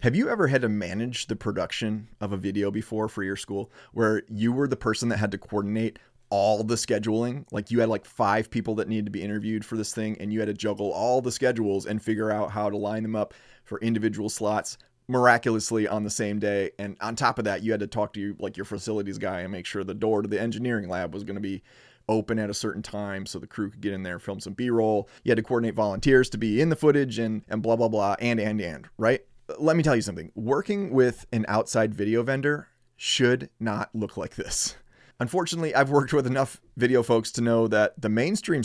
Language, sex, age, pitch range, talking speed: English, male, 30-49, 105-120 Hz, 240 wpm